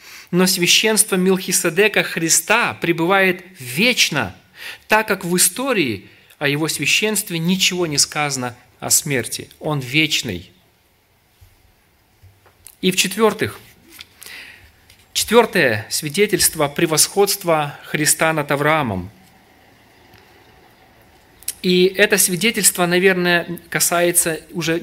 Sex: male